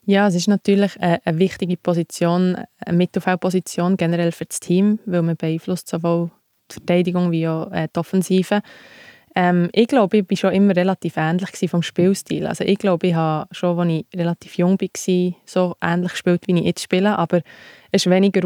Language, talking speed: German, 185 wpm